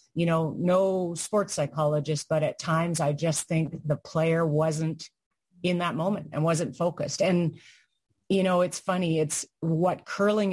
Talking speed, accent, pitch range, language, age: 160 wpm, American, 150-175 Hz, English, 30-49